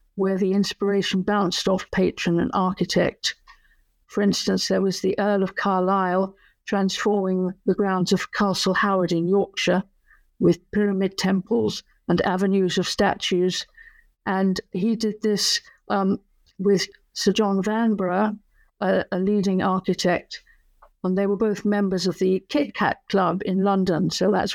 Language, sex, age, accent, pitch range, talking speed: English, female, 50-69, British, 185-210 Hz, 140 wpm